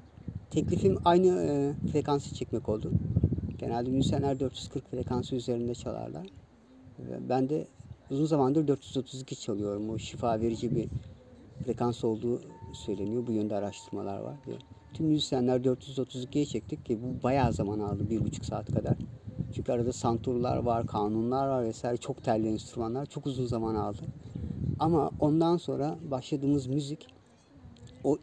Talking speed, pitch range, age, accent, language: 130 wpm, 115-150 Hz, 50-69, native, Turkish